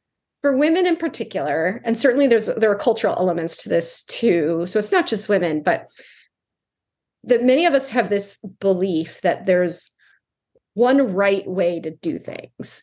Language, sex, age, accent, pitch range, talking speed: English, female, 30-49, American, 185-260 Hz, 165 wpm